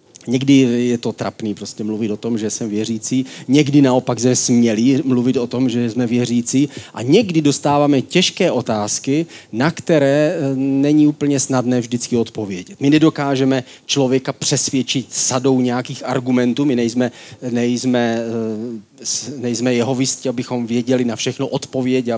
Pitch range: 115-140 Hz